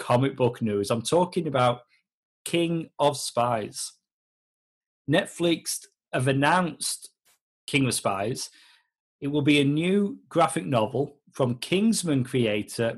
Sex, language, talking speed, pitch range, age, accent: male, English, 115 wpm, 125-190 Hz, 40-59, British